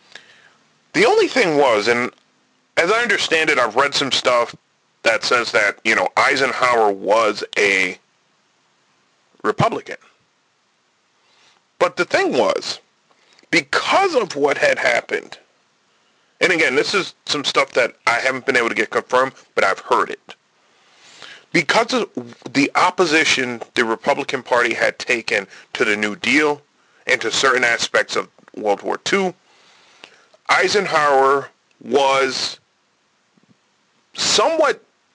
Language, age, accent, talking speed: English, 30-49, American, 125 wpm